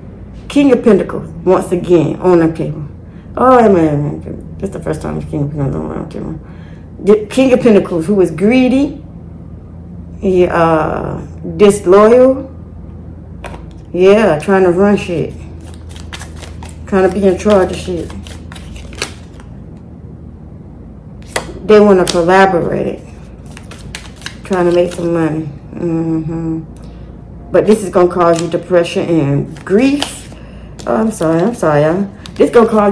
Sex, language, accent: female, English, American